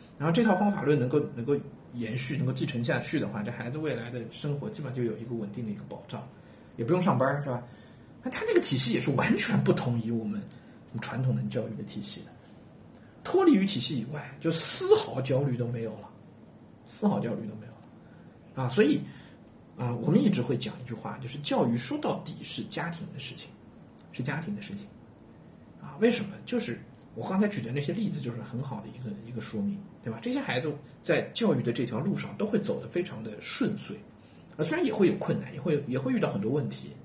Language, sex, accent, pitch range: Chinese, male, native, 120-185 Hz